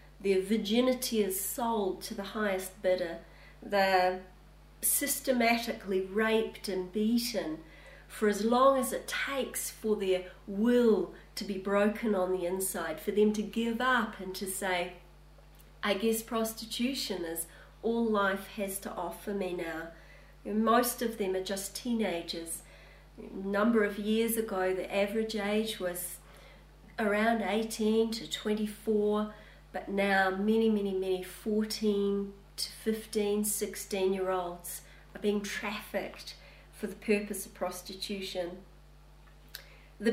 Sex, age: female, 40-59